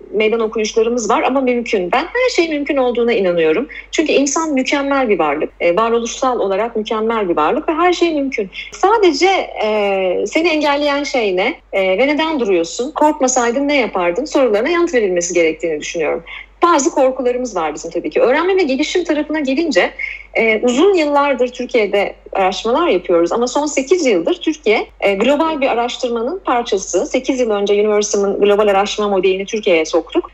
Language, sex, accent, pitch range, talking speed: Turkish, female, native, 215-300 Hz, 150 wpm